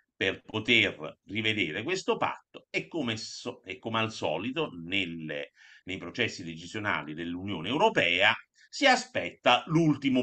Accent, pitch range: native, 85-120 Hz